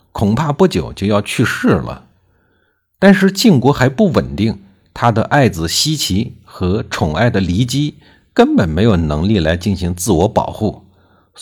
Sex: male